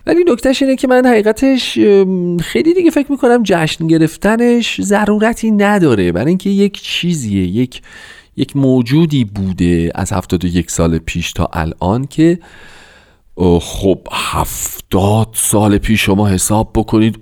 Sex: male